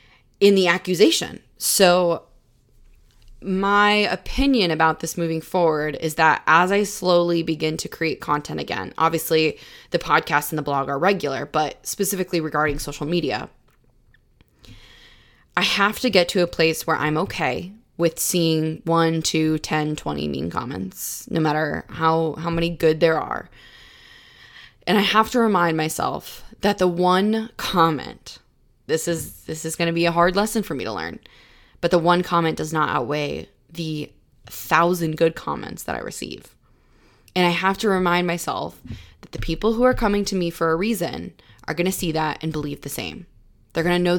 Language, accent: English, American